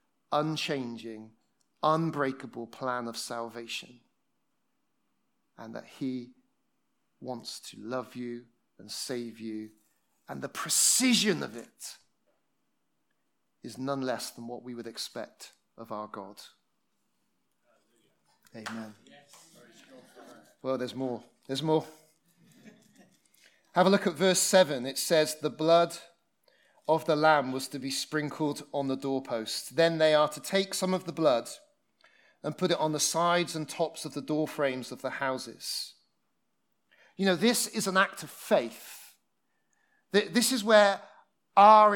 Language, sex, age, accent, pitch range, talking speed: English, male, 30-49, British, 130-195 Hz, 135 wpm